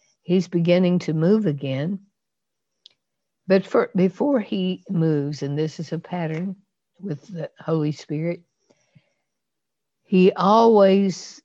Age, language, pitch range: 60-79, English, 150-180 Hz